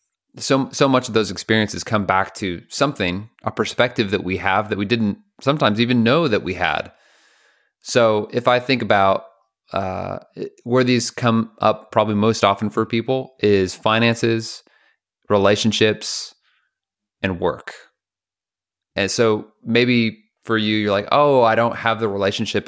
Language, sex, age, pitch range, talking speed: English, male, 30-49, 95-115 Hz, 150 wpm